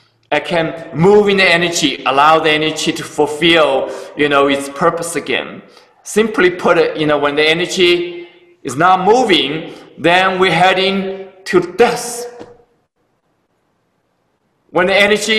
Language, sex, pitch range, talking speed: English, male, 155-200 Hz, 135 wpm